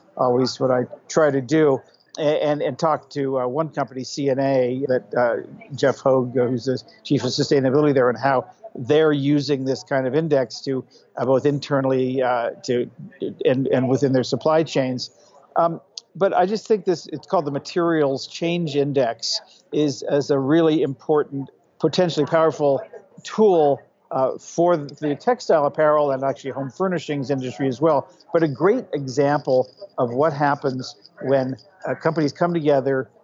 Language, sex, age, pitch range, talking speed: English, male, 60-79, 130-155 Hz, 155 wpm